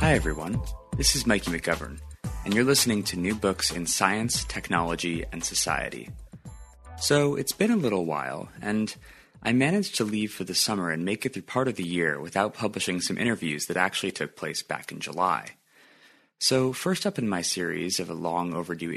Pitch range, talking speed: 85-120 Hz, 185 wpm